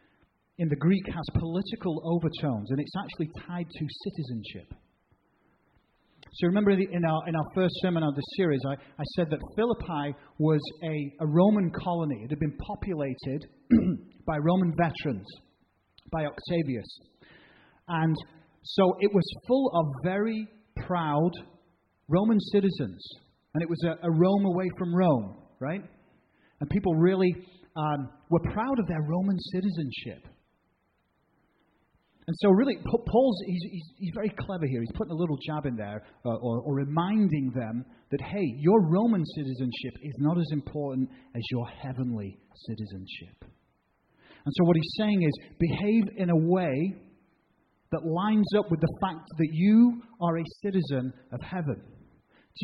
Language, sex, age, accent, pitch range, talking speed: English, male, 30-49, British, 140-185 Hz, 150 wpm